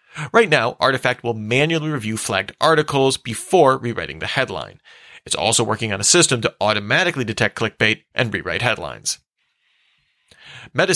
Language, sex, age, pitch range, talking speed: English, male, 40-59, 115-155 Hz, 140 wpm